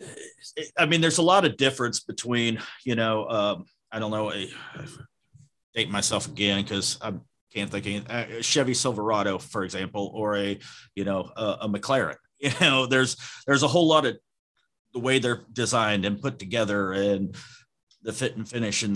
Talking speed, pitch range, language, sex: 175 wpm, 105-130 Hz, English, male